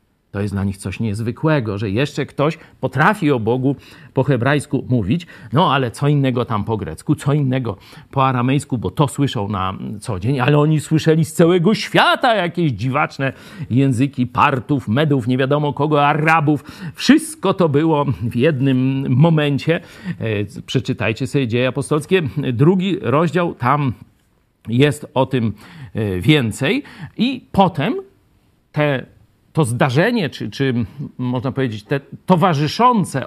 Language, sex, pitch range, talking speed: Polish, male, 125-170 Hz, 135 wpm